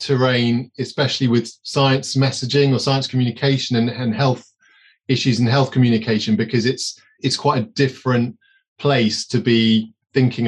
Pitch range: 110-130 Hz